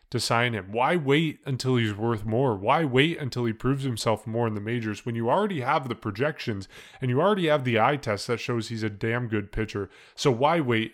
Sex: male